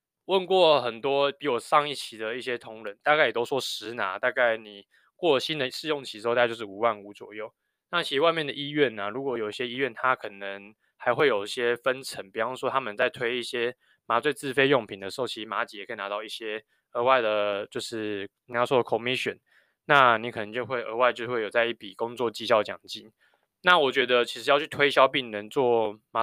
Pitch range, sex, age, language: 110-140 Hz, male, 20-39, Chinese